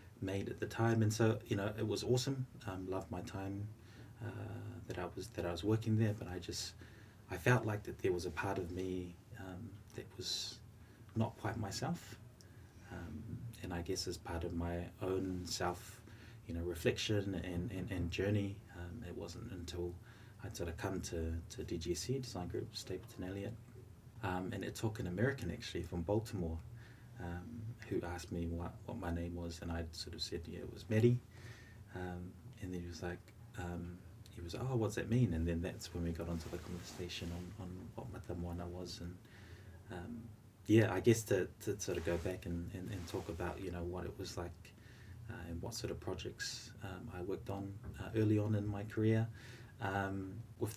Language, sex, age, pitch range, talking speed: English, male, 20-39, 90-115 Hz, 200 wpm